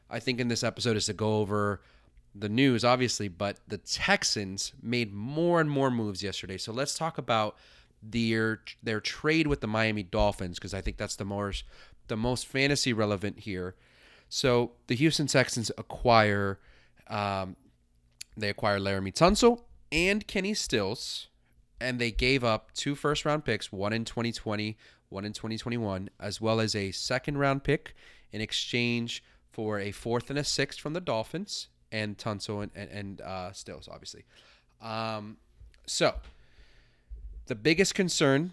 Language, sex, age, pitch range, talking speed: English, male, 30-49, 95-120 Hz, 155 wpm